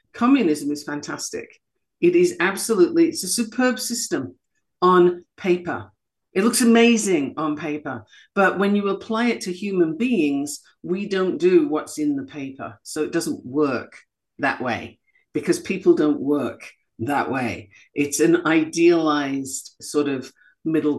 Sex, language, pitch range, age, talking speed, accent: female, English, 155-250 Hz, 50-69, 145 wpm, British